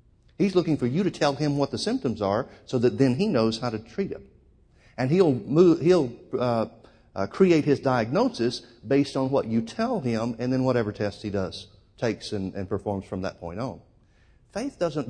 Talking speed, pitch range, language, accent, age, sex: 205 wpm, 110-150 Hz, English, American, 50-69, male